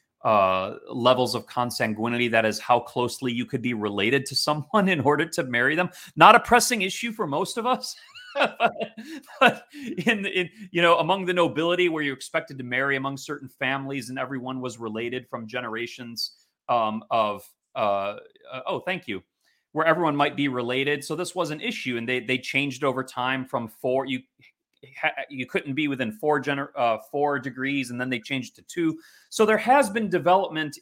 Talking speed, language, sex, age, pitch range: 185 wpm, English, male, 30-49, 130-180 Hz